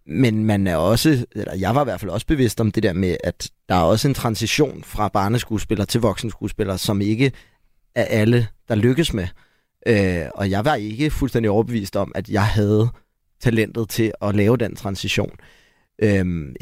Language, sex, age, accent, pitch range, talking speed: Danish, male, 30-49, native, 110-130 Hz, 190 wpm